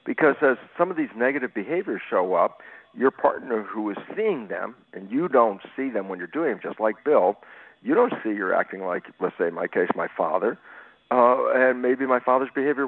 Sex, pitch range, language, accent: male, 115-170 Hz, English, American